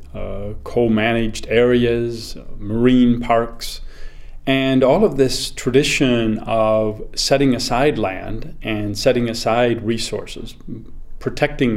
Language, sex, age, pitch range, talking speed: English, male, 40-59, 110-135 Hz, 95 wpm